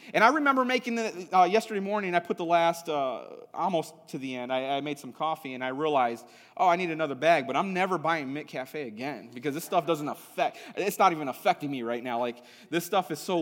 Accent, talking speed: American, 235 wpm